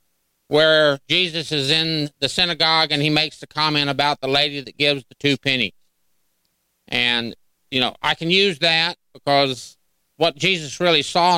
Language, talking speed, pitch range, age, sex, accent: English, 165 wpm, 130-165 Hz, 50-69, male, American